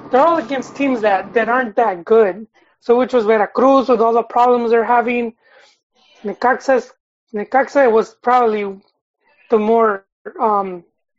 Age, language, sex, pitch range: 30-49, English, male, 210-250 Hz